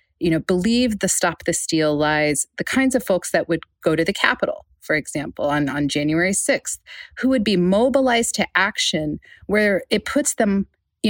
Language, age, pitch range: English, 30-49, 170-235 Hz